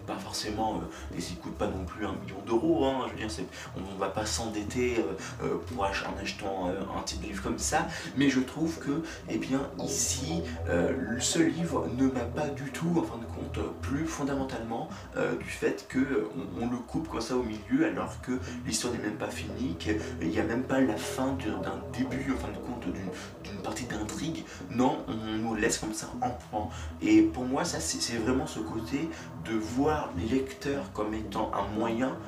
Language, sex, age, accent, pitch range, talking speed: French, male, 30-49, French, 85-130 Hz, 220 wpm